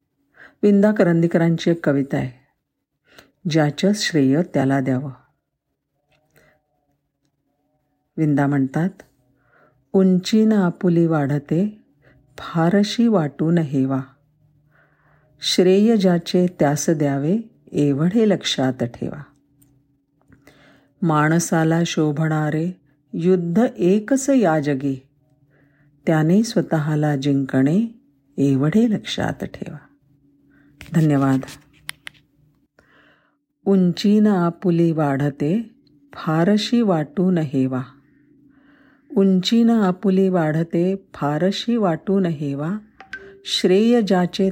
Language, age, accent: Marathi, 50-69, native